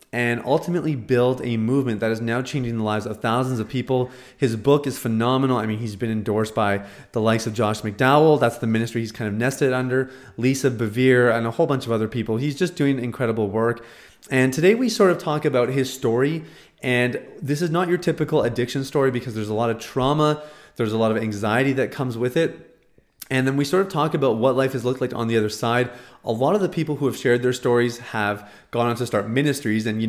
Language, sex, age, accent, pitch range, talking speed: English, male, 30-49, American, 115-135 Hz, 235 wpm